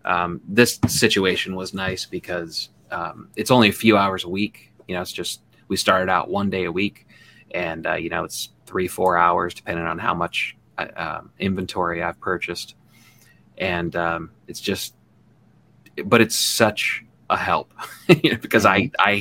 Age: 30-49